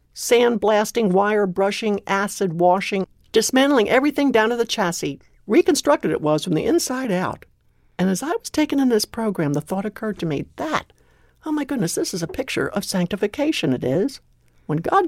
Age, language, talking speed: 60-79, English, 180 wpm